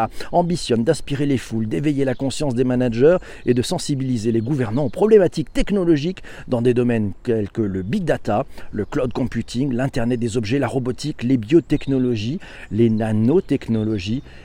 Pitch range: 120-155 Hz